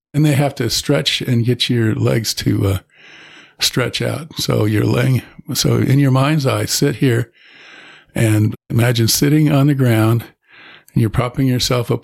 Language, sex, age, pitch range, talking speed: English, male, 50-69, 110-135 Hz, 170 wpm